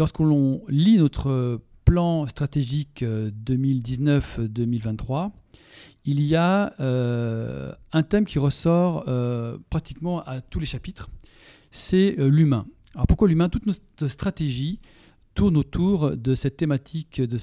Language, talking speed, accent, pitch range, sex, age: French, 115 wpm, French, 125-170 Hz, male, 40-59